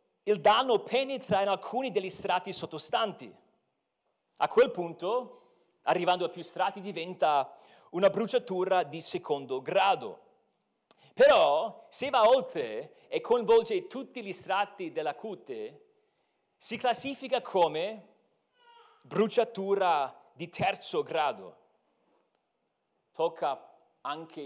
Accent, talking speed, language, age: native, 100 wpm, Italian, 40-59